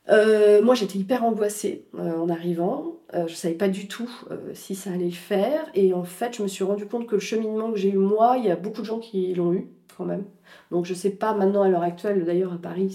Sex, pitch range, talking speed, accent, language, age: female, 185-250 Hz, 260 wpm, French, French, 40-59